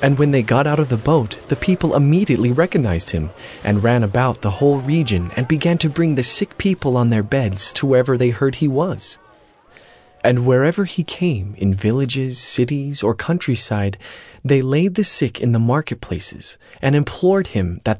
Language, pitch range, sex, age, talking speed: English, 105-150 Hz, male, 30-49, 185 wpm